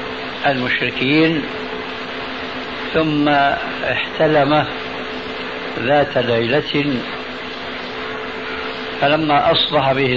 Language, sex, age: Arabic, male, 60-79